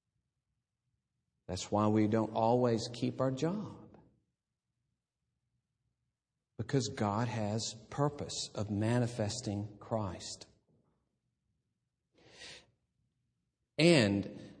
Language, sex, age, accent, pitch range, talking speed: English, male, 50-69, American, 100-165 Hz, 65 wpm